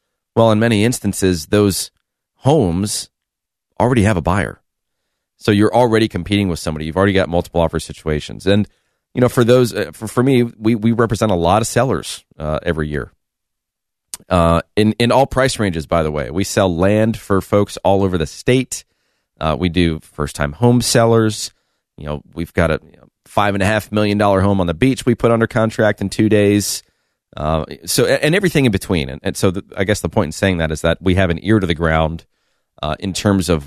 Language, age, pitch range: English, 30-49, 80-110 Hz